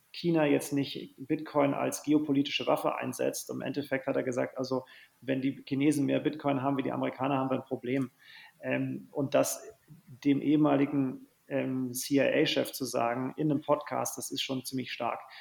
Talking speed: 165 wpm